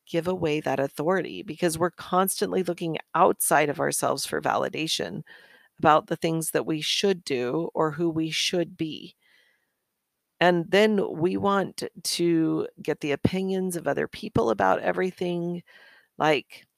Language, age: English, 40-59